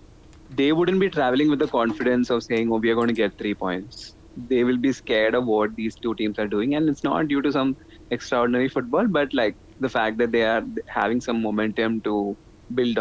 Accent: Indian